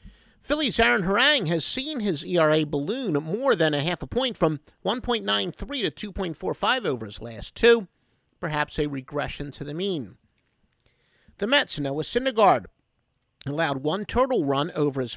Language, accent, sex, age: English, American, male, 50-69